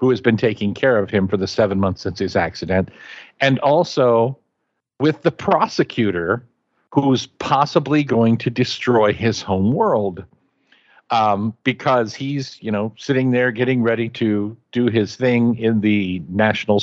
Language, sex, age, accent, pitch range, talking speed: English, male, 50-69, American, 105-130 Hz, 155 wpm